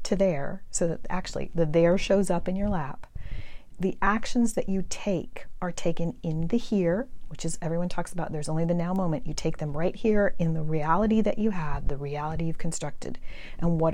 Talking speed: 210 wpm